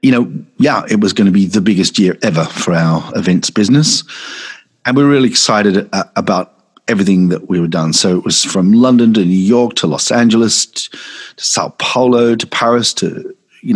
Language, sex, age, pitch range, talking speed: English, male, 40-59, 90-120 Hz, 200 wpm